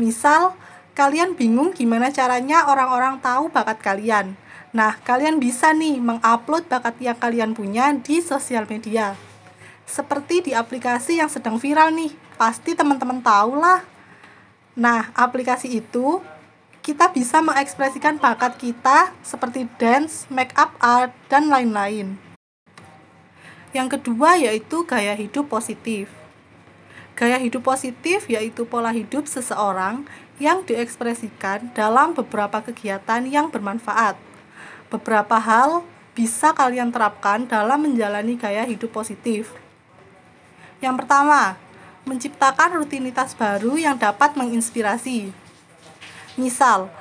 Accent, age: native, 20-39